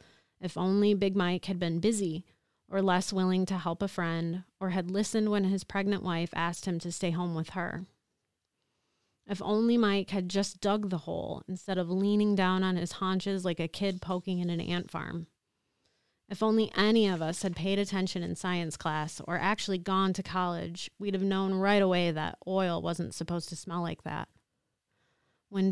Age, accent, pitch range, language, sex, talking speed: 30-49, American, 175-200 Hz, English, female, 190 wpm